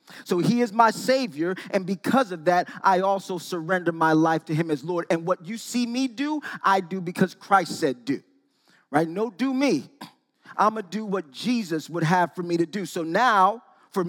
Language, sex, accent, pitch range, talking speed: English, male, American, 150-200 Hz, 210 wpm